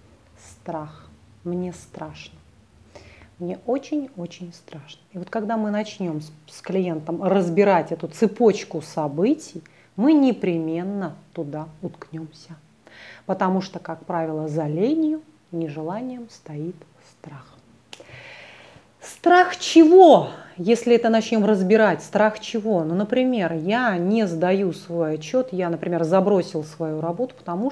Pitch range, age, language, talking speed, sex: 160-210 Hz, 30-49, Russian, 110 wpm, female